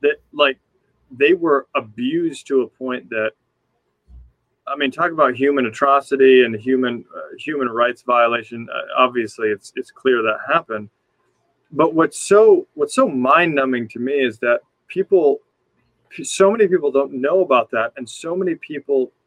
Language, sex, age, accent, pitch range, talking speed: English, male, 30-49, American, 120-175 Hz, 160 wpm